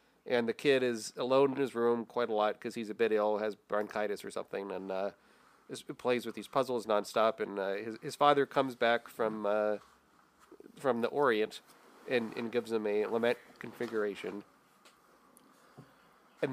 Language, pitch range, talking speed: English, 105-125 Hz, 175 wpm